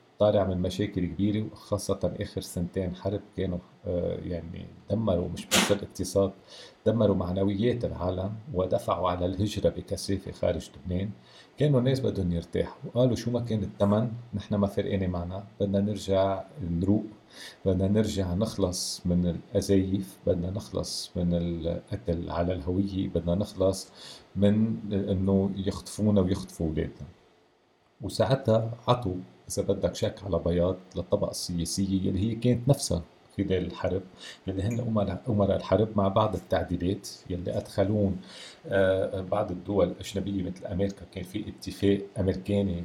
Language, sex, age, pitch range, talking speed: Arabic, male, 40-59, 90-105 Hz, 130 wpm